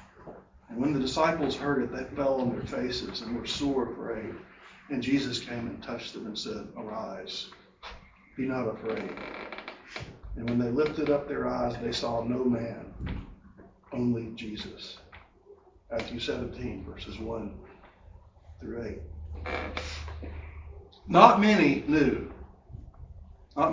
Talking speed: 125 wpm